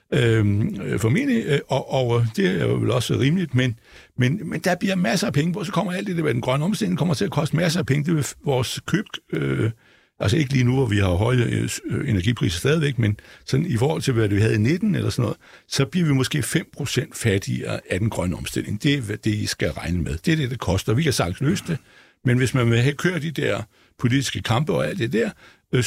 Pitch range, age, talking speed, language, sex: 120-175 Hz, 60-79, 240 wpm, Danish, male